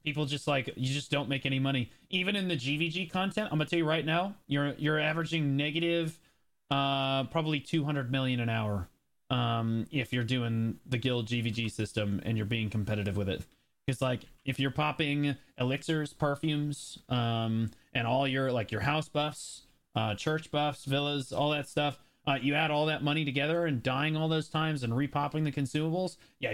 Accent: American